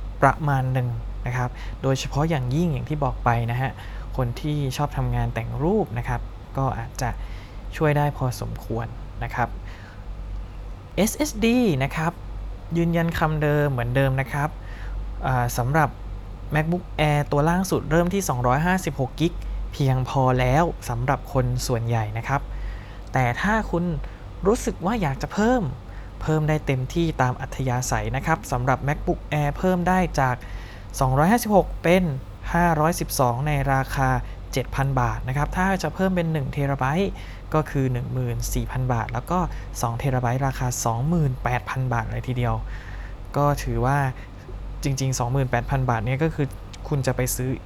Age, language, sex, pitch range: 20-39, Thai, male, 115-150 Hz